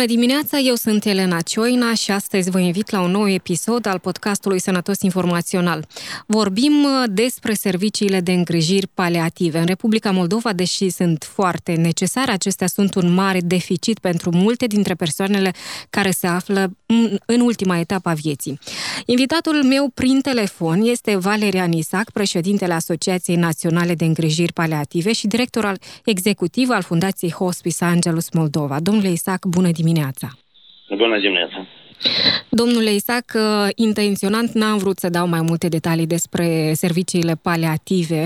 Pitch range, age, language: 175-215 Hz, 20-39, Romanian